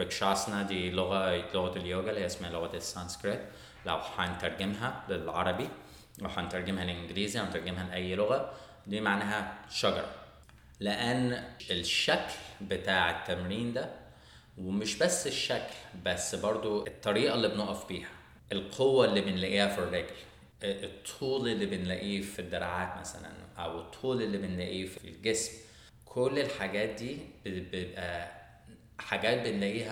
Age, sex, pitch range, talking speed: 20-39, male, 90-105 Hz, 115 wpm